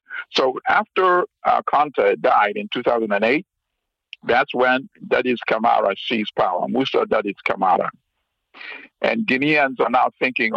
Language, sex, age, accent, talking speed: English, male, 50-69, American, 120 wpm